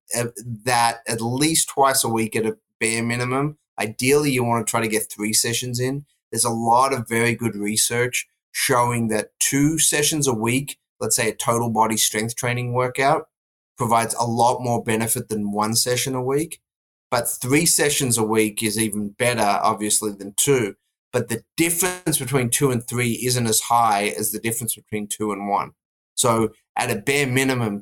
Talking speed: 180 wpm